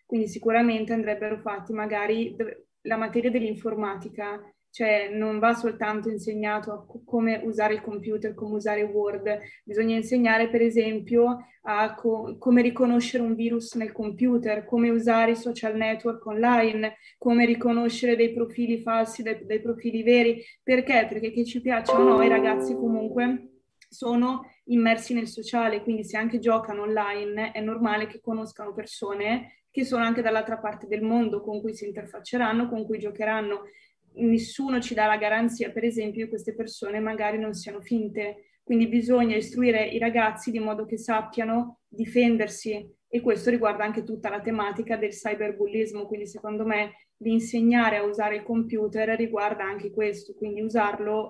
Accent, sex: native, female